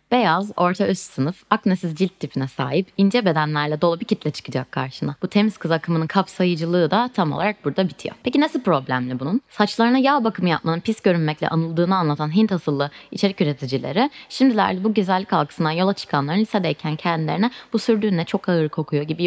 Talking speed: 170 wpm